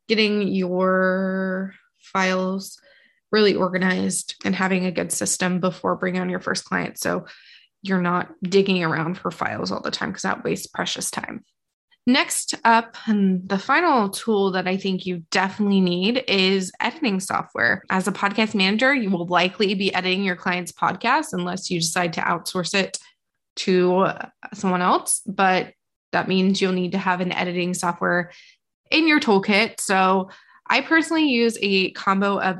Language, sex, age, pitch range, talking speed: English, female, 20-39, 185-220 Hz, 160 wpm